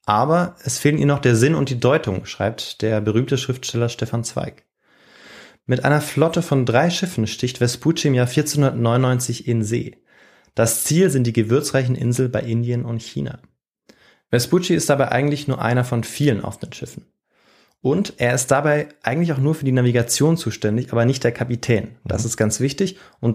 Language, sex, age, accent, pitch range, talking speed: German, male, 20-39, German, 115-145 Hz, 175 wpm